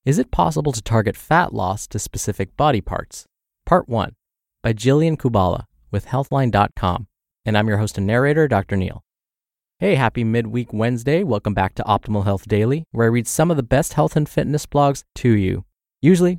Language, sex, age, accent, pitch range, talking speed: English, male, 20-39, American, 100-130 Hz, 185 wpm